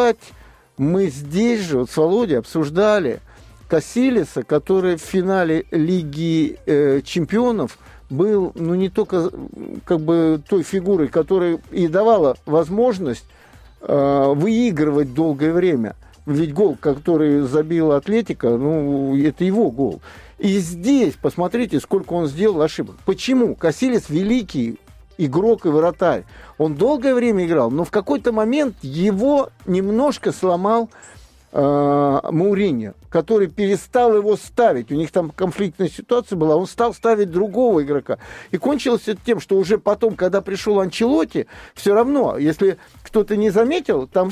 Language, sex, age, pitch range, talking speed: Russian, male, 50-69, 155-215 Hz, 130 wpm